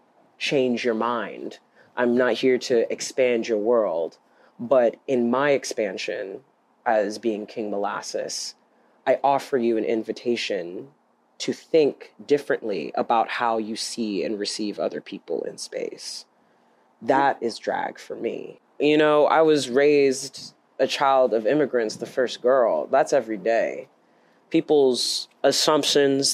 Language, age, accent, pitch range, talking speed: English, 30-49, American, 115-145 Hz, 130 wpm